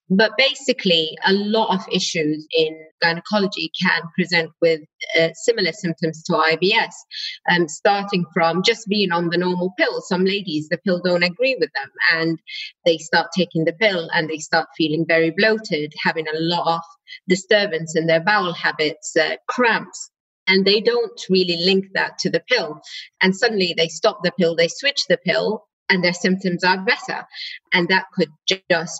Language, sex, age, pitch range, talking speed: English, female, 30-49, 165-190 Hz, 175 wpm